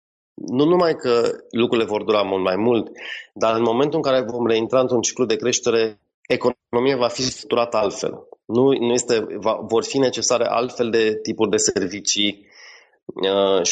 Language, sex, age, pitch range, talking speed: Romanian, male, 30-49, 110-140 Hz, 165 wpm